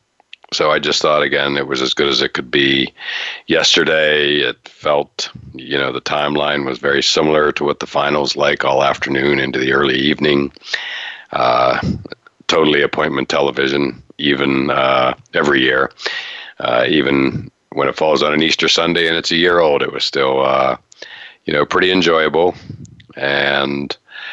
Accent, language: American, English